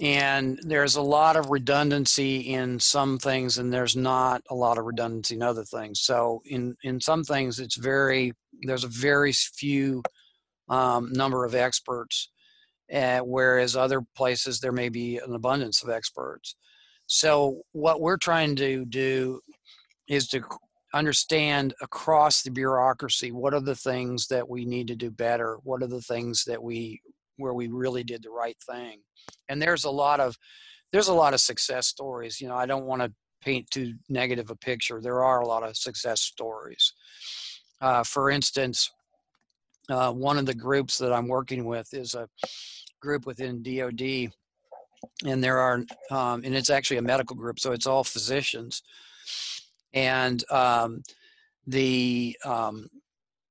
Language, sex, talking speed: English, male, 160 wpm